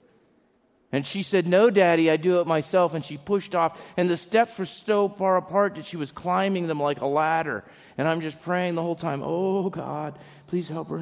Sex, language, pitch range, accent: male, English, 135-180 Hz, American